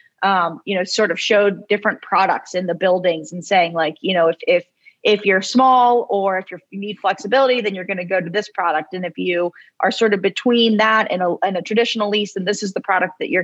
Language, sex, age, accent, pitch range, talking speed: English, female, 30-49, American, 180-220 Hz, 250 wpm